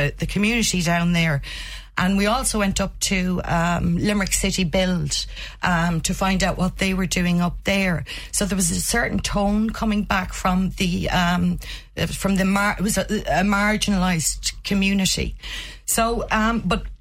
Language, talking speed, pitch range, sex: English, 165 wpm, 175-200 Hz, female